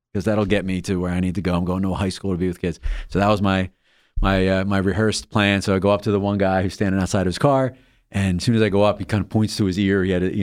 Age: 30-49